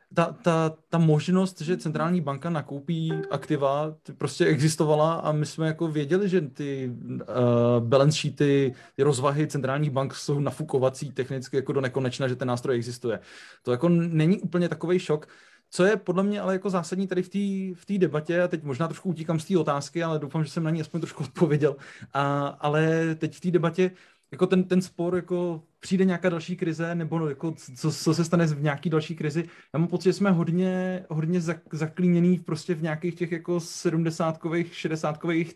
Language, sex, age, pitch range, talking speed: Slovak, male, 30-49, 140-175 Hz, 185 wpm